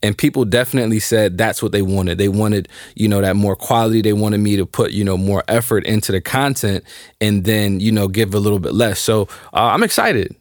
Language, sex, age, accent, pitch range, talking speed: English, male, 20-39, American, 100-125 Hz, 230 wpm